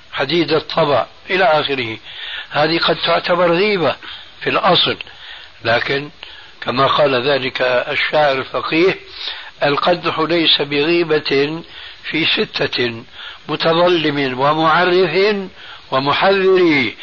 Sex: male